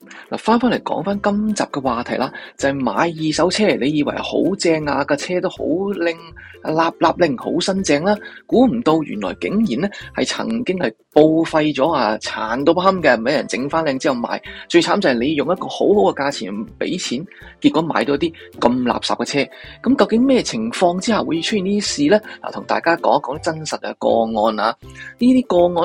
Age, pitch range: 20-39, 160-230 Hz